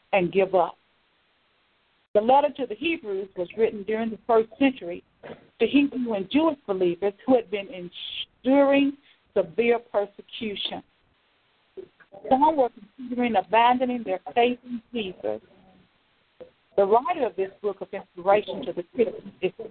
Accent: American